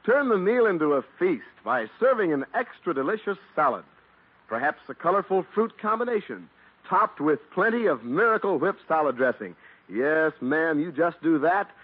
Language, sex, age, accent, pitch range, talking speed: English, male, 60-79, American, 180-265 Hz, 150 wpm